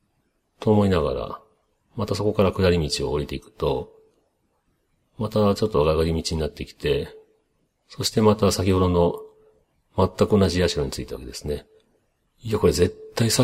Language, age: Japanese, 40-59